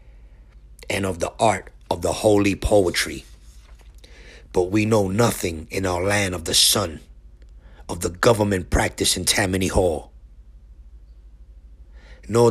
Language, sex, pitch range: English, male, 65-100 Hz